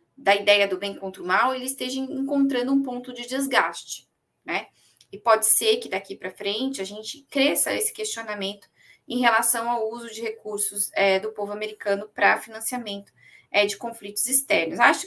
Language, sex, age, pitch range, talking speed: Portuguese, female, 20-39, 200-255 Hz, 165 wpm